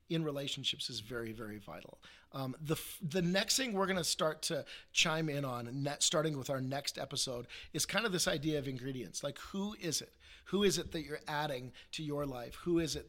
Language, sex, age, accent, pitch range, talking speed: English, male, 40-59, American, 130-165 Hz, 230 wpm